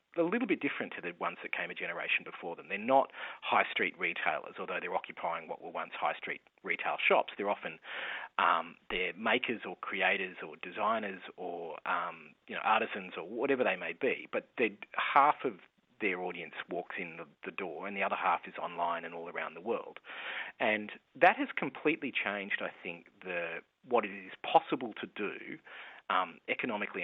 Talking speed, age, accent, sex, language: 185 wpm, 30-49, Australian, male, English